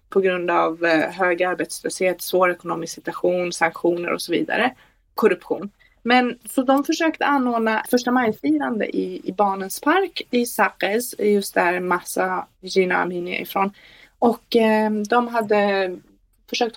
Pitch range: 190-260 Hz